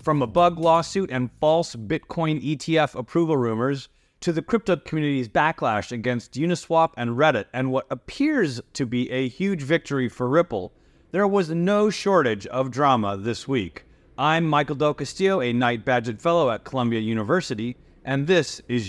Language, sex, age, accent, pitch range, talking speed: English, male, 30-49, American, 125-165 Hz, 160 wpm